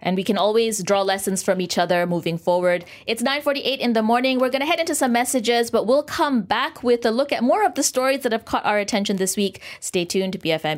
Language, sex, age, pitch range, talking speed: English, female, 30-49, 180-245 Hz, 255 wpm